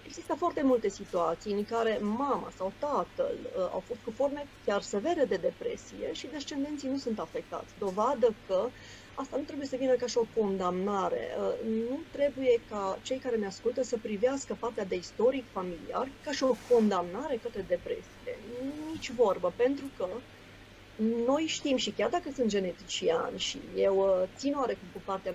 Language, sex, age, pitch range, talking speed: Romanian, female, 30-49, 200-265 Hz, 165 wpm